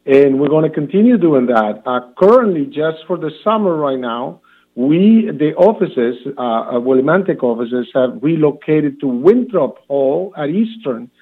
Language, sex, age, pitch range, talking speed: English, male, 50-69, 130-175 Hz, 150 wpm